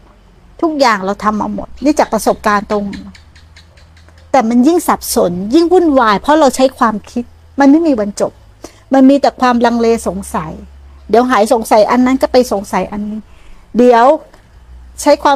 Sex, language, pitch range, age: female, Thai, 215-285 Hz, 60-79